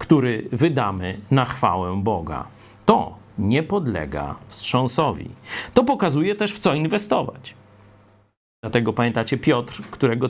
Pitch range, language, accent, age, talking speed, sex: 110-160 Hz, Polish, native, 50-69, 110 wpm, male